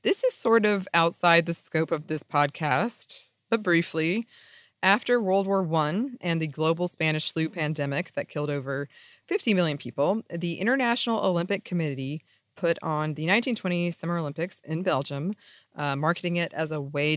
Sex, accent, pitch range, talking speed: female, American, 155-210 Hz, 160 wpm